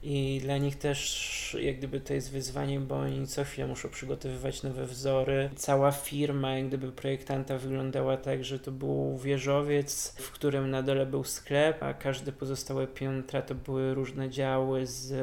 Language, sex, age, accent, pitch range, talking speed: Polish, male, 20-39, native, 135-140 Hz, 170 wpm